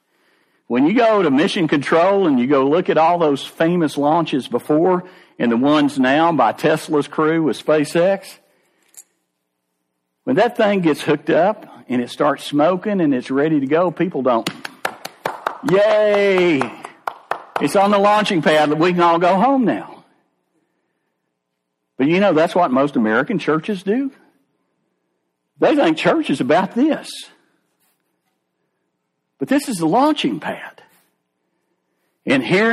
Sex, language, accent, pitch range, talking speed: male, English, American, 140-230 Hz, 145 wpm